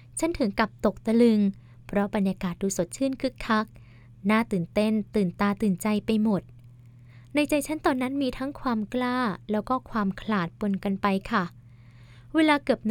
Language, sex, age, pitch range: Thai, female, 20-39, 165-225 Hz